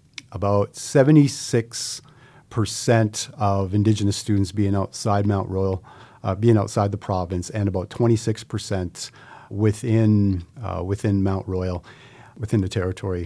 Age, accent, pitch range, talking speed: 40-59, American, 100-120 Hz, 130 wpm